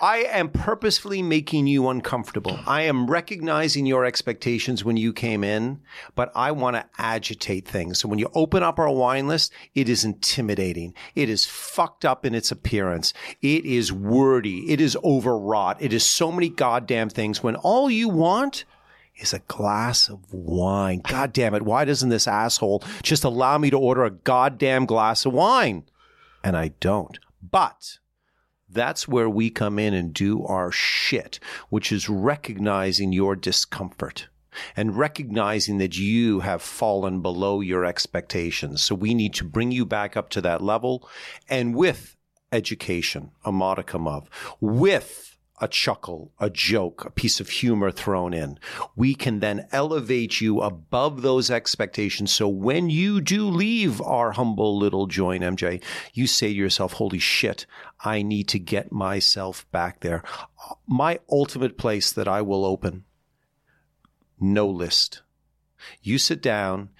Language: English